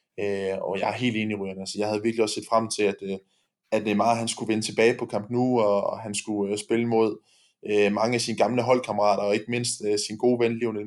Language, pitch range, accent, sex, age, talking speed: Danish, 105-120 Hz, native, male, 20-39, 255 wpm